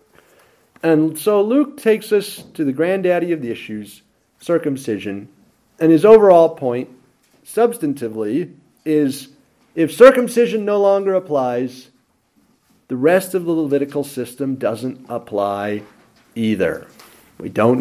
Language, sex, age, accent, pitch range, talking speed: English, male, 40-59, American, 120-165 Hz, 115 wpm